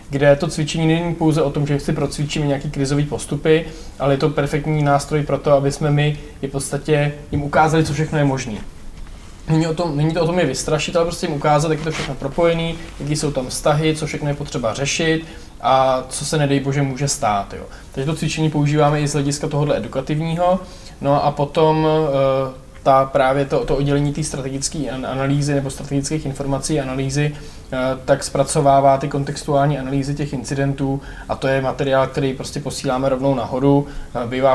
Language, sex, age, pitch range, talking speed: Czech, male, 20-39, 135-150 Hz, 180 wpm